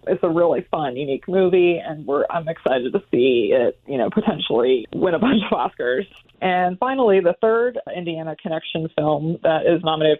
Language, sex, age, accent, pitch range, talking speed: English, female, 20-39, American, 155-180 Hz, 180 wpm